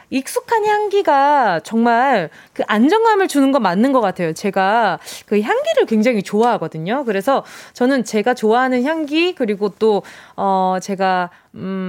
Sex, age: female, 20-39